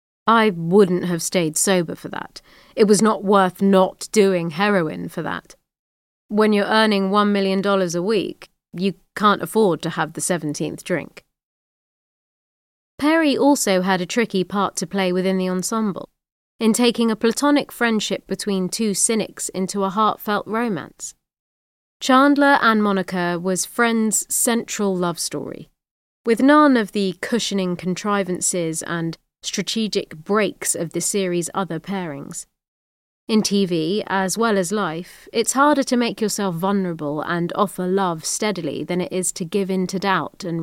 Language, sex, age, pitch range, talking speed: English, female, 30-49, 175-220 Hz, 150 wpm